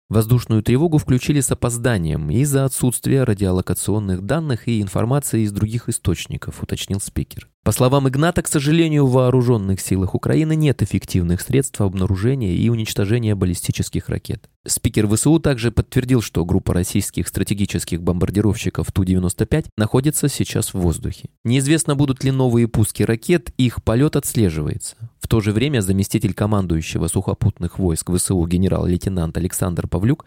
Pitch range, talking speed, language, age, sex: 95-130 Hz, 135 wpm, Russian, 20-39, male